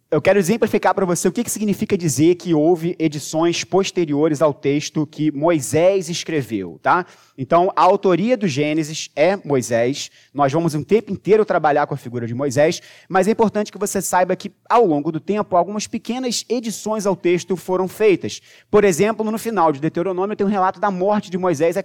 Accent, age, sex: Brazilian, 20-39, male